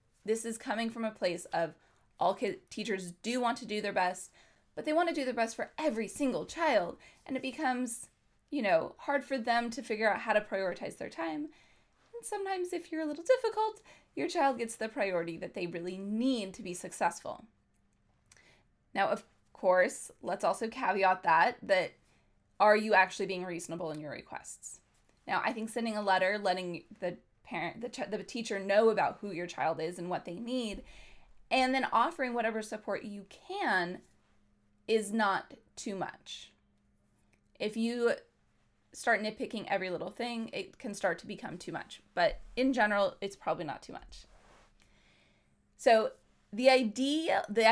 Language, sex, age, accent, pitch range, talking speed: English, female, 20-39, American, 185-250 Hz, 170 wpm